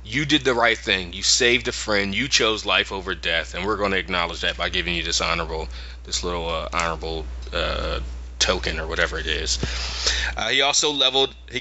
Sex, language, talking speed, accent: male, English, 205 wpm, American